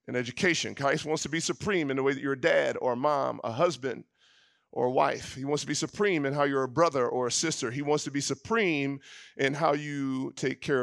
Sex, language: male, English